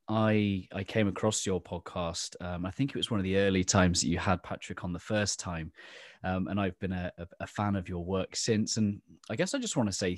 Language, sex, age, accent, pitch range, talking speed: English, male, 20-39, British, 90-105 Hz, 255 wpm